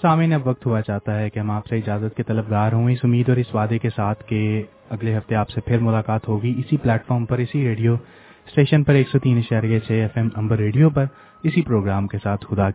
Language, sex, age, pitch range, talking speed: English, male, 20-39, 105-120 Hz, 200 wpm